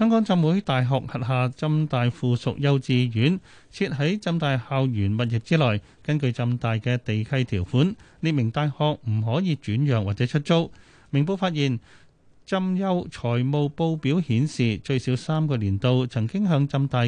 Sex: male